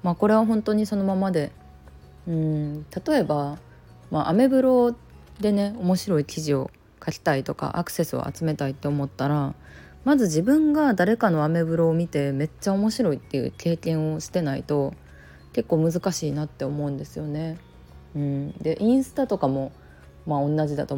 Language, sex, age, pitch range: Japanese, female, 20-39, 140-190 Hz